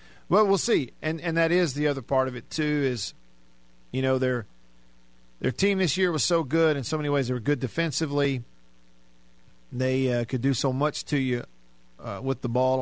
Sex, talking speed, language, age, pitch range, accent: male, 205 wpm, English, 50-69, 105-140 Hz, American